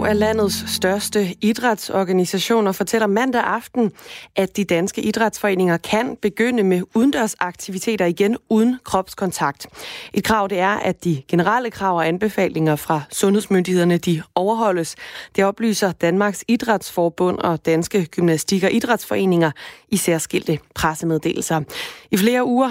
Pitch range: 170-210 Hz